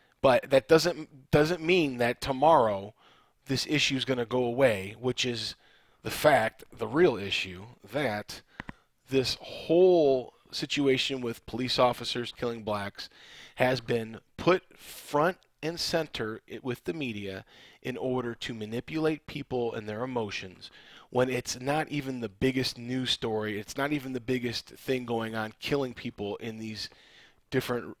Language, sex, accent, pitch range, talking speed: English, male, American, 115-140 Hz, 145 wpm